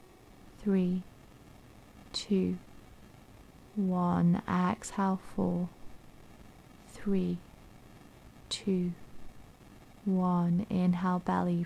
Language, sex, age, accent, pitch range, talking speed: English, female, 30-49, British, 125-190 Hz, 55 wpm